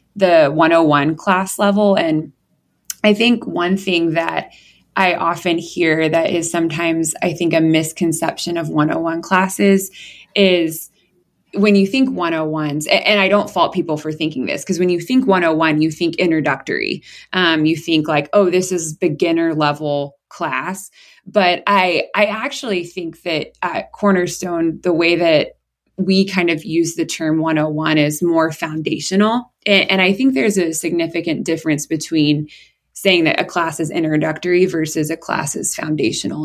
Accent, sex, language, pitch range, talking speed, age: American, female, English, 155-185 Hz, 155 wpm, 20-39